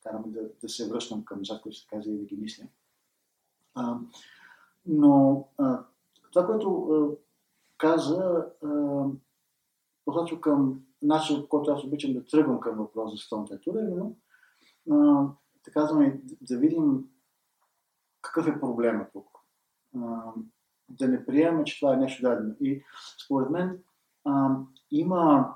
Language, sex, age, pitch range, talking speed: Bulgarian, male, 50-69, 120-175 Hz, 125 wpm